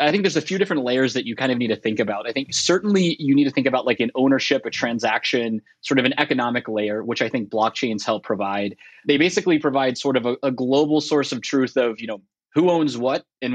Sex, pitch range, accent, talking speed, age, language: male, 120-150 Hz, American, 255 wpm, 20-39, English